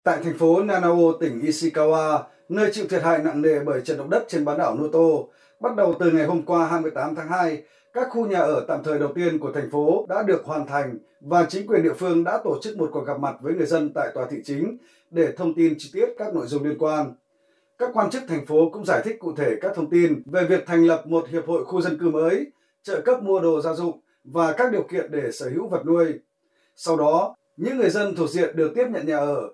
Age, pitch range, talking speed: 20-39, 155-215 Hz, 250 wpm